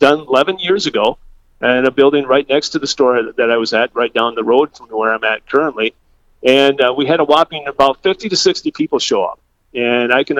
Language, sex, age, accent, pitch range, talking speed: English, male, 40-59, American, 120-145 Hz, 235 wpm